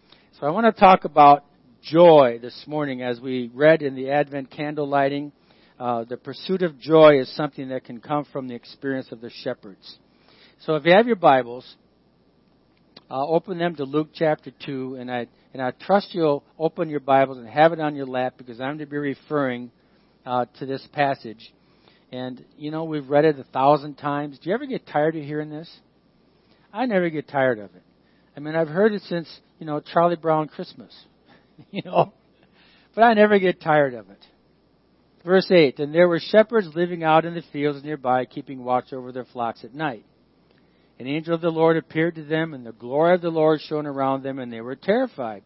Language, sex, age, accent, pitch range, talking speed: English, male, 50-69, American, 130-165 Hz, 205 wpm